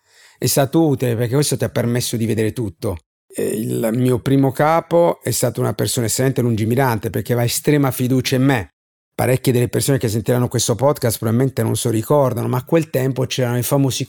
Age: 50-69